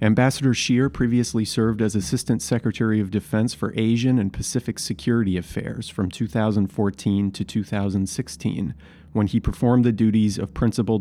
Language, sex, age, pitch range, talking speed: English, male, 40-59, 100-115 Hz, 140 wpm